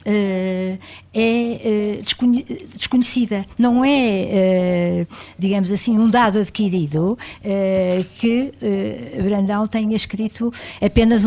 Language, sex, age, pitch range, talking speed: Portuguese, female, 60-79, 175-220 Hz, 75 wpm